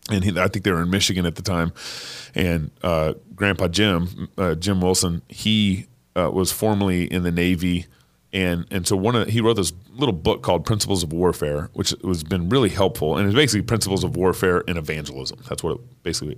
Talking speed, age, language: 205 wpm, 30-49, English